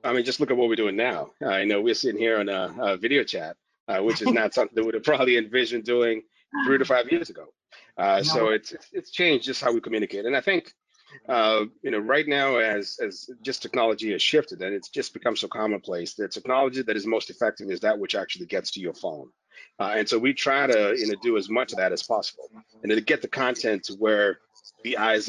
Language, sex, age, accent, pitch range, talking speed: English, male, 30-49, American, 110-170 Hz, 245 wpm